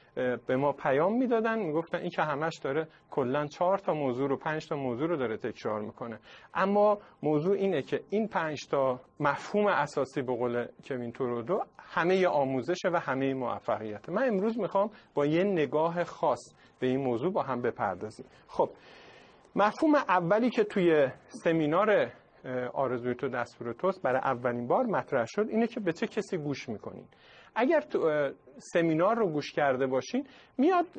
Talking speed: 155 wpm